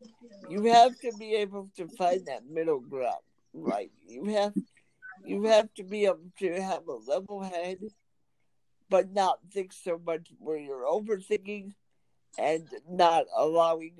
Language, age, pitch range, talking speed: English, 60-79, 150-205 Hz, 145 wpm